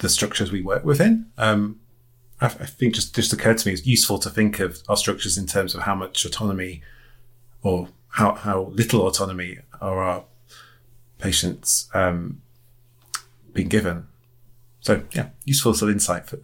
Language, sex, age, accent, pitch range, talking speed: English, male, 30-49, British, 100-120 Hz, 165 wpm